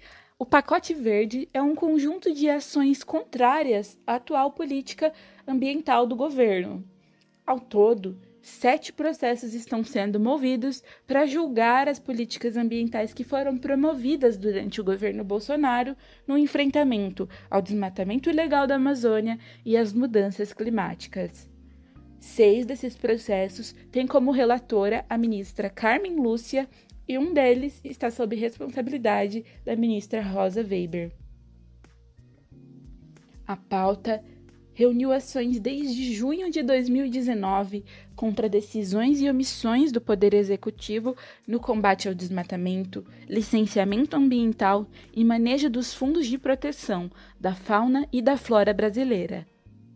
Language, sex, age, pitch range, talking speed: Portuguese, female, 20-39, 205-270 Hz, 120 wpm